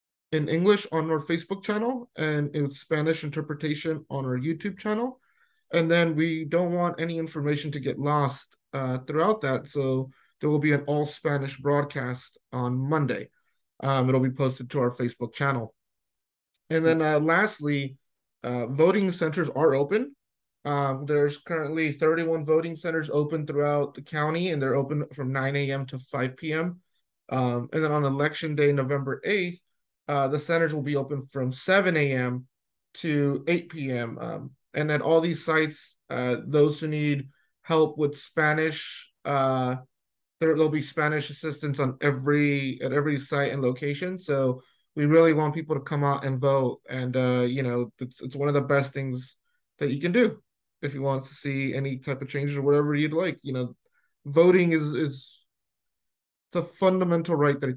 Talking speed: 175 wpm